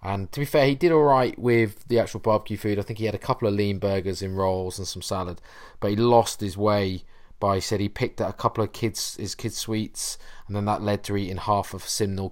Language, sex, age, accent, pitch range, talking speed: English, male, 20-39, British, 90-110 Hz, 265 wpm